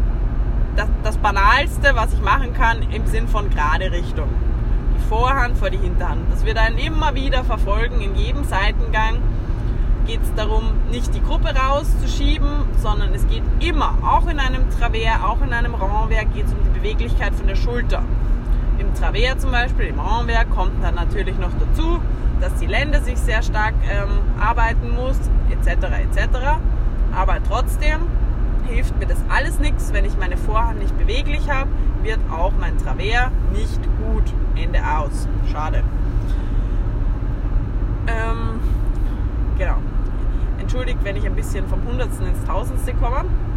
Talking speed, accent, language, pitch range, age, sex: 150 wpm, German, German, 95-110 Hz, 20-39, female